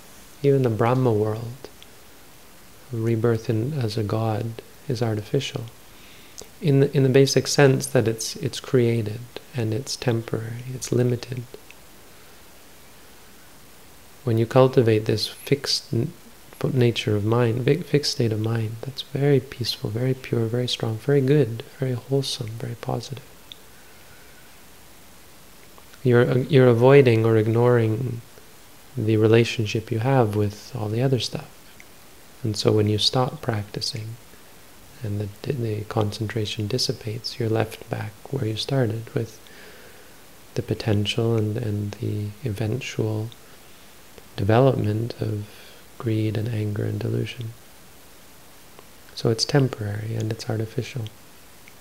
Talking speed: 120 wpm